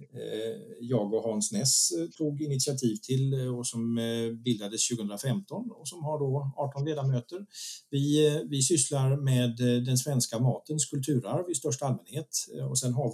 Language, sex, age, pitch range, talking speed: Swedish, male, 50-69, 115-145 Hz, 140 wpm